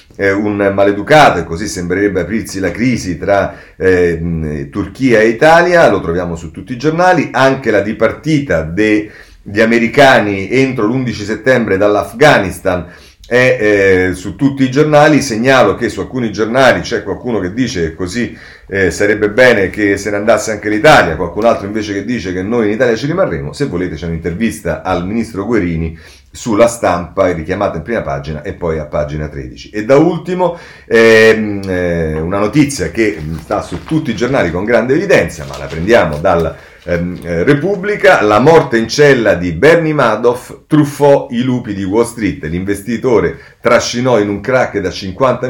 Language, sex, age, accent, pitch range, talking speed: Italian, male, 40-59, native, 90-130 Hz, 165 wpm